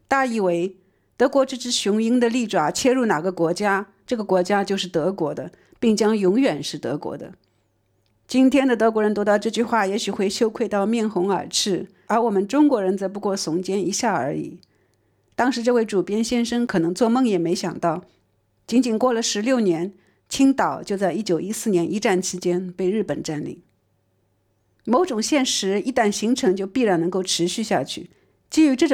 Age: 50-69